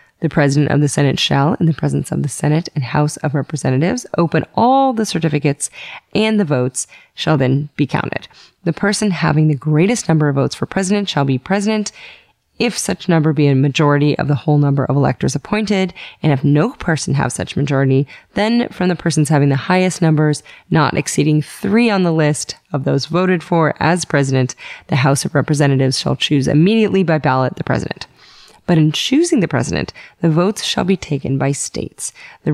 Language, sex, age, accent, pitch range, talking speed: English, female, 20-39, American, 145-185 Hz, 190 wpm